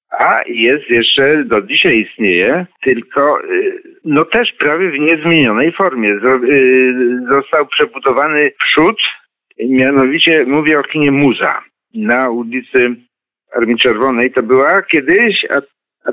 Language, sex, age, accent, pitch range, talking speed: Polish, male, 50-69, native, 130-195 Hz, 110 wpm